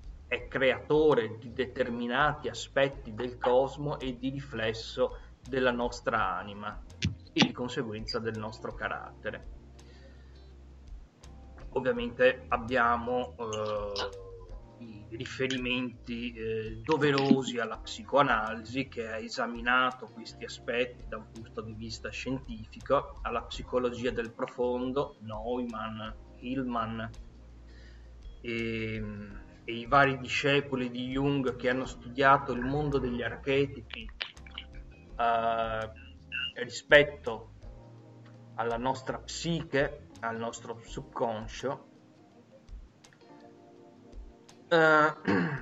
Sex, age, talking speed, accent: male, 30-49, 90 wpm, native